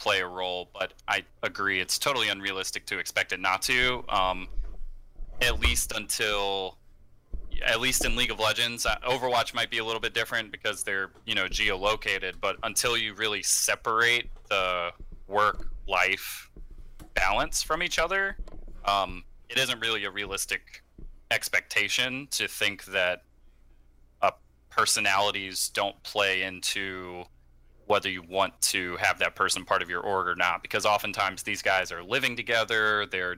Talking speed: 155 wpm